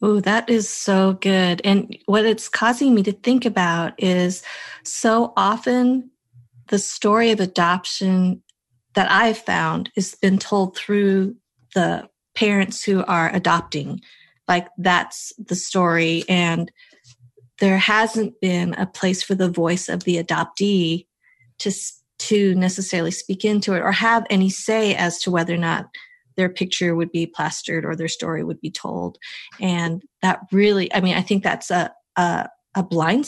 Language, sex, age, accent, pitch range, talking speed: English, female, 30-49, American, 175-210 Hz, 155 wpm